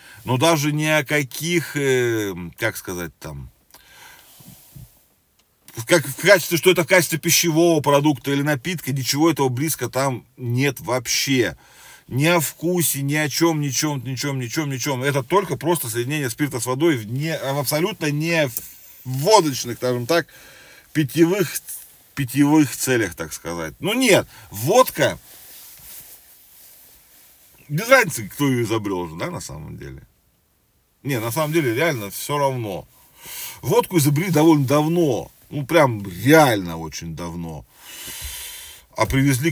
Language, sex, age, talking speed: Russian, male, 40-59, 130 wpm